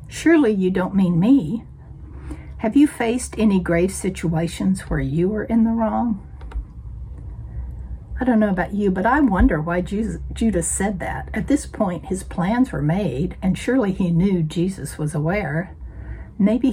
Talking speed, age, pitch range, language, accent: 160 wpm, 60-79, 160-215 Hz, English, American